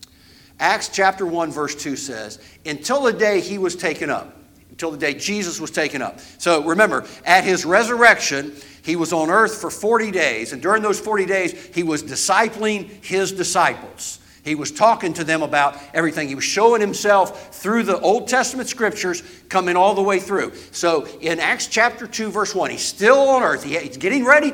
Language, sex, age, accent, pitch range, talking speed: English, male, 60-79, American, 145-225 Hz, 190 wpm